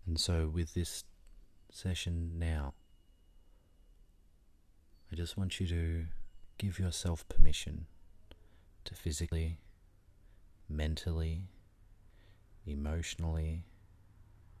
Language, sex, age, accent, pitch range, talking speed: English, male, 30-49, Australian, 75-90 Hz, 75 wpm